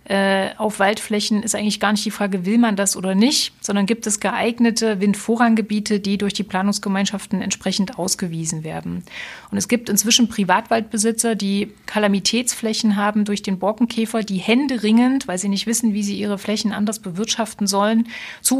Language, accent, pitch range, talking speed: German, German, 200-225 Hz, 160 wpm